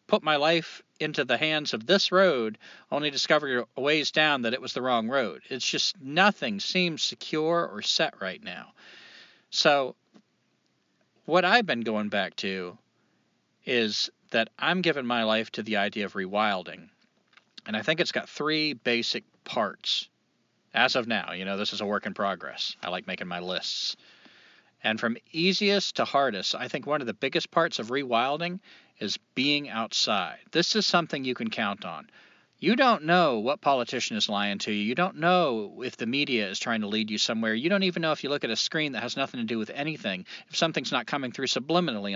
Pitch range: 115-180 Hz